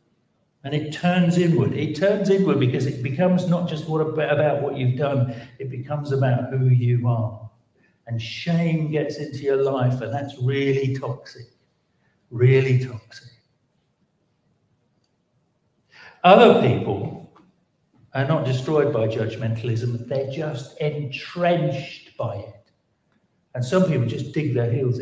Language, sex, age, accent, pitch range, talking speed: English, male, 60-79, British, 115-145 Hz, 130 wpm